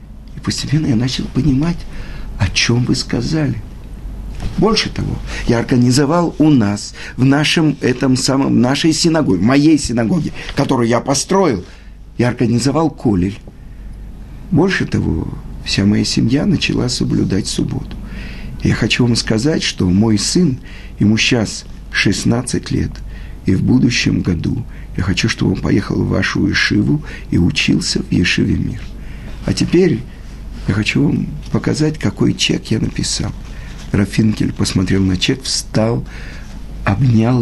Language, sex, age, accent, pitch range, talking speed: Russian, male, 50-69, native, 110-155 Hz, 130 wpm